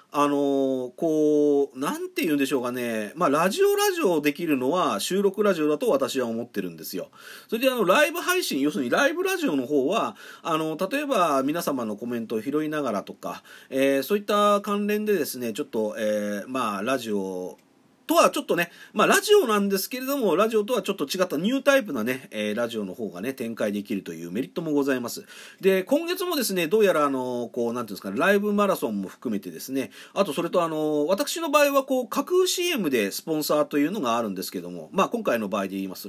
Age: 40-59